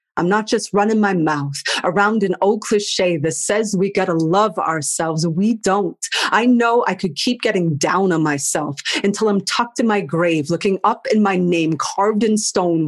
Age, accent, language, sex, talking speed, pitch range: 40-59, American, English, female, 190 wpm, 170-220 Hz